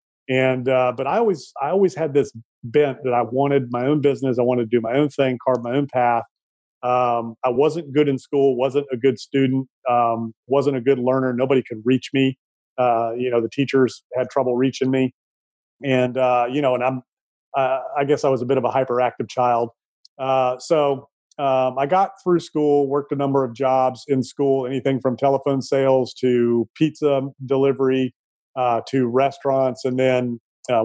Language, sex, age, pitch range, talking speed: English, male, 40-59, 125-140 Hz, 195 wpm